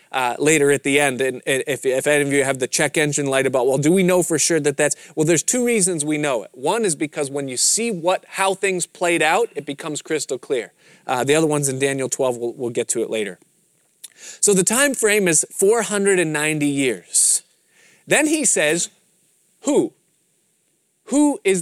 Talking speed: 205 wpm